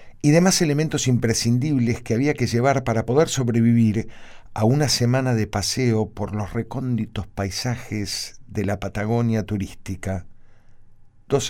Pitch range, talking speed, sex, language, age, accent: 100-130 Hz, 130 wpm, male, Spanish, 50-69, Argentinian